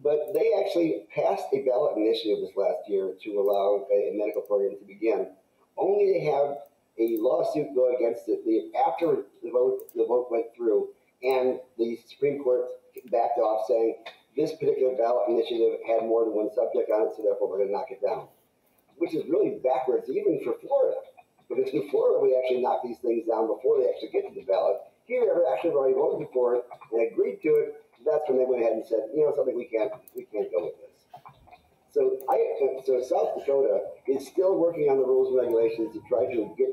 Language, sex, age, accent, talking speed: English, male, 40-59, American, 205 wpm